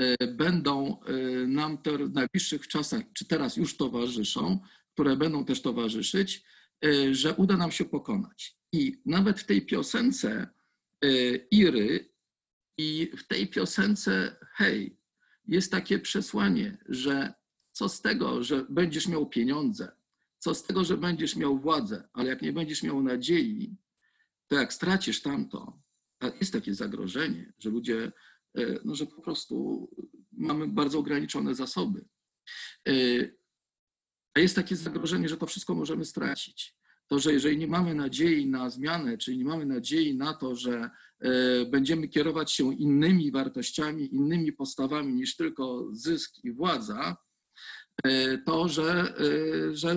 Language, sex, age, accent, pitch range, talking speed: Polish, male, 50-69, native, 140-210 Hz, 135 wpm